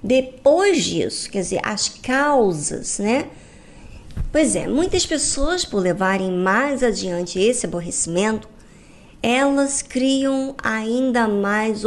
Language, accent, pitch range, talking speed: Portuguese, Brazilian, 195-270 Hz, 105 wpm